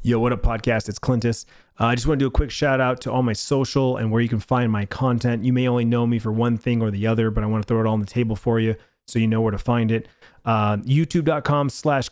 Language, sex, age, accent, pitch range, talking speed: English, male, 30-49, American, 110-130 Hz, 295 wpm